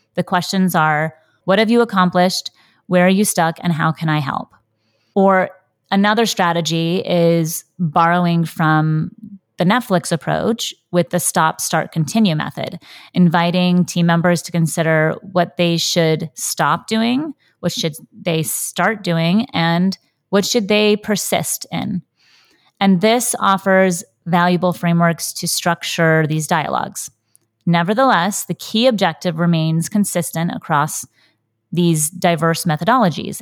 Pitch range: 160-195 Hz